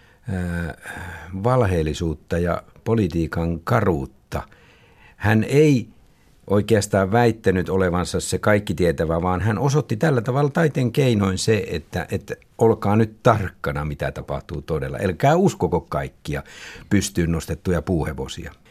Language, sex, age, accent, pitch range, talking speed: Finnish, male, 60-79, native, 90-115 Hz, 110 wpm